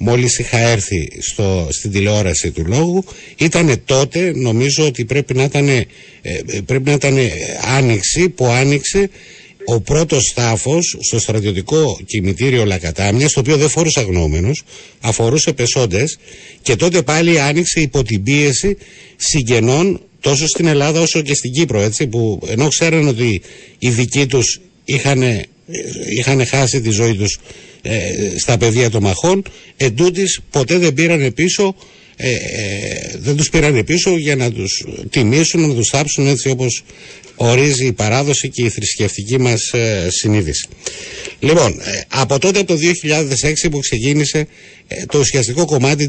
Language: Greek